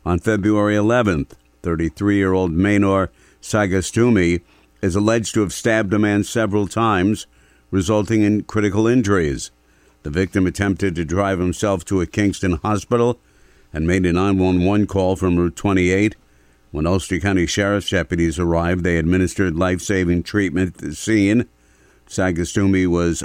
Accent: American